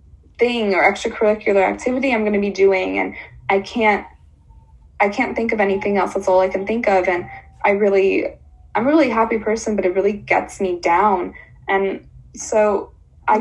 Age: 20-39